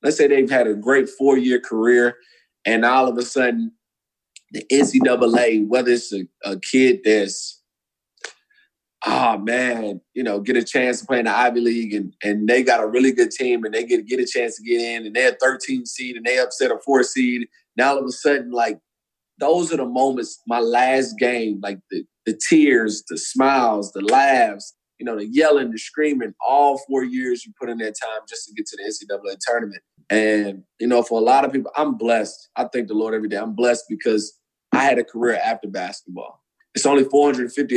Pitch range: 110-140 Hz